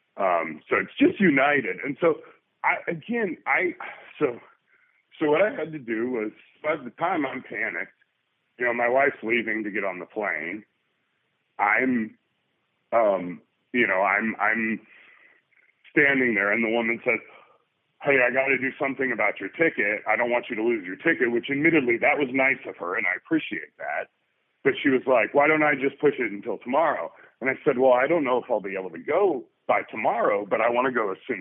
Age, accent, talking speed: 40-59, American, 205 wpm